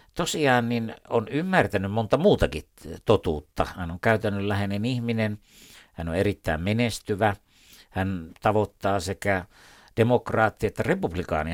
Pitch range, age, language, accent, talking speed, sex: 90-115 Hz, 60-79, Finnish, native, 110 wpm, male